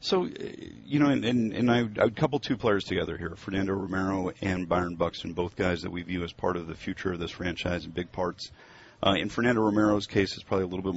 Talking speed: 240 wpm